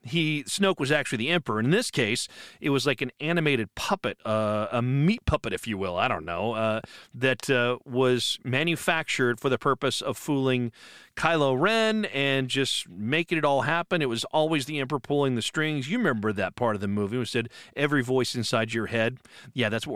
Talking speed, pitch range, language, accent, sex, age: 205 wpm, 115-150 Hz, English, American, male, 40-59